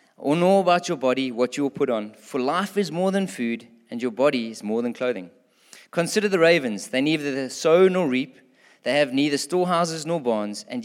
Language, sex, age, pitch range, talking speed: English, male, 20-39, 130-180 Hz, 210 wpm